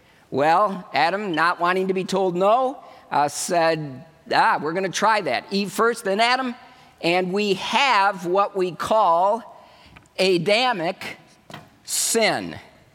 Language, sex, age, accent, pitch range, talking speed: English, male, 50-69, American, 170-215 Hz, 130 wpm